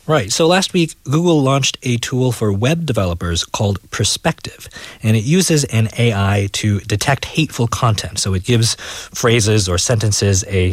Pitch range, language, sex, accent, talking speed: 100-125 Hz, English, male, American, 160 wpm